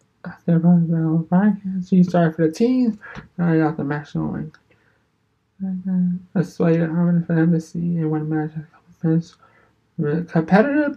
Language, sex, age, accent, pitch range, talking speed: English, male, 20-39, American, 160-185 Hz, 125 wpm